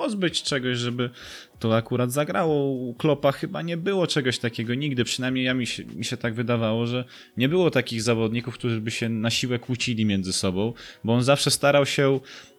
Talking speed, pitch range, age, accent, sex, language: 180 wpm, 115-140 Hz, 20-39, native, male, Polish